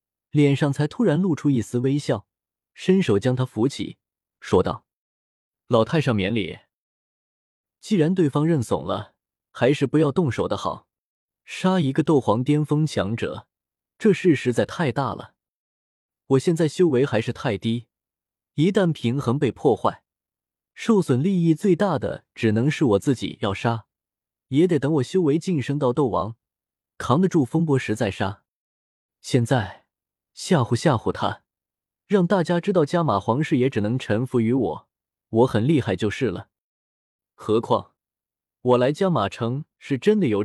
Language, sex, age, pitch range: Chinese, male, 20-39, 110-160 Hz